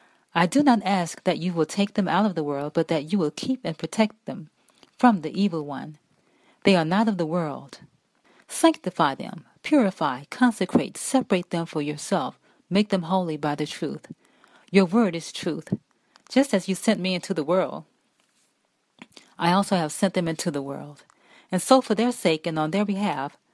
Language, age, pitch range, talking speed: English, 40-59, 155-200 Hz, 190 wpm